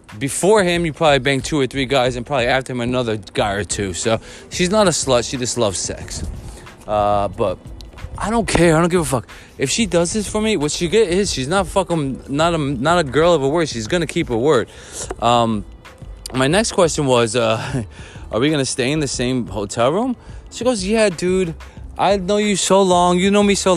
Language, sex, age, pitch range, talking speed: English, male, 20-39, 120-175 Hz, 225 wpm